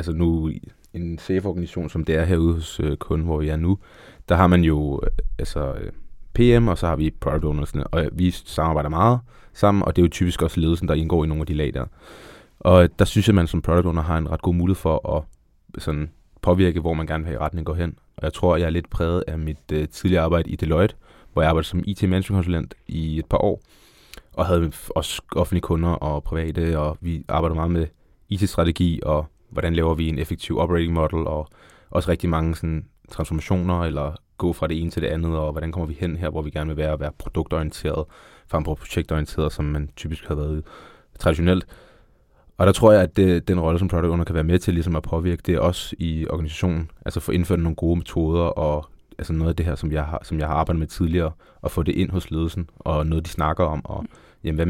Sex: male